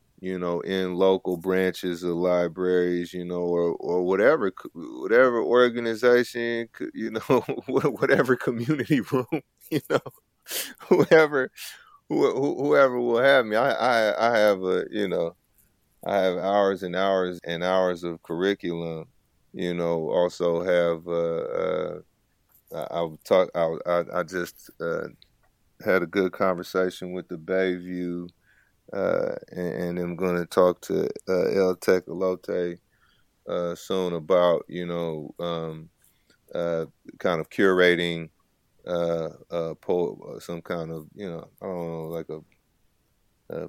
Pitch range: 85-100 Hz